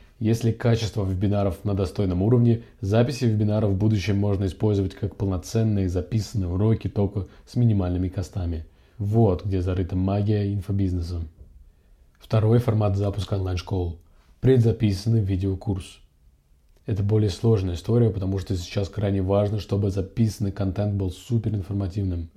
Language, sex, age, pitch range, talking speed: Russian, male, 20-39, 95-110 Hz, 120 wpm